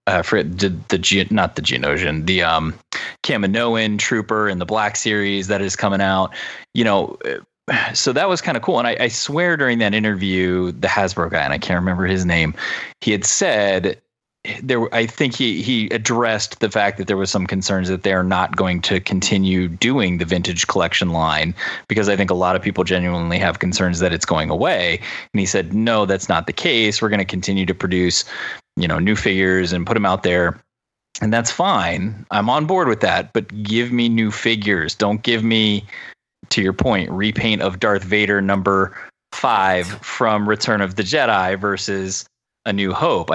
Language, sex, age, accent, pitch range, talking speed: English, male, 30-49, American, 90-110 Hz, 200 wpm